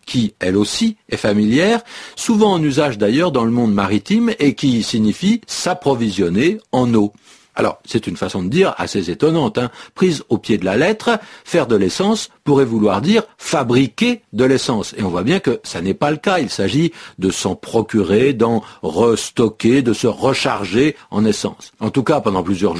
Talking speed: 200 wpm